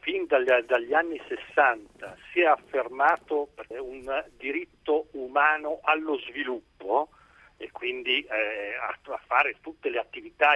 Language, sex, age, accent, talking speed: Italian, male, 50-69, native, 120 wpm